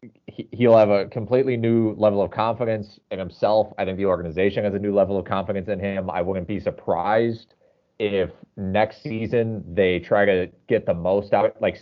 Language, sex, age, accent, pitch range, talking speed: English, male, 30-49, American, 90-115 Hz, 190 wpm